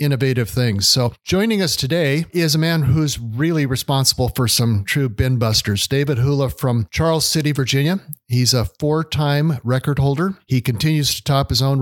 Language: English